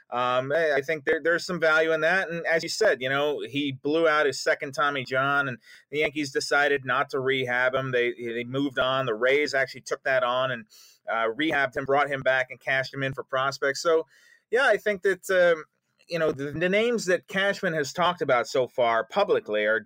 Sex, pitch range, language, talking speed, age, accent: male, 135-170 Hz, English, 220 wpm, 30-49, American